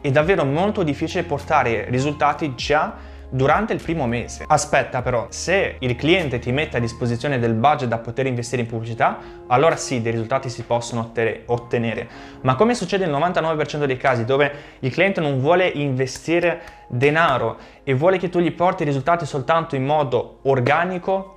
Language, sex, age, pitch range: Italian, male, 20-39, 125-155 Hz